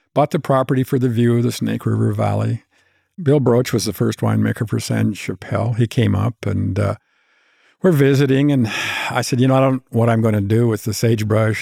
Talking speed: 215 wpm